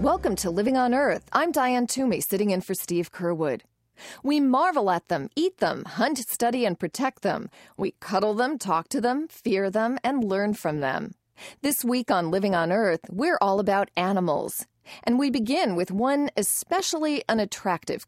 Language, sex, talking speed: English, female, 175 wpm